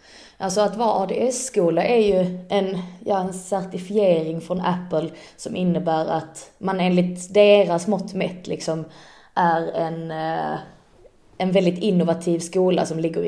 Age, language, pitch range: 20-39, Swedish, 165-195 Hz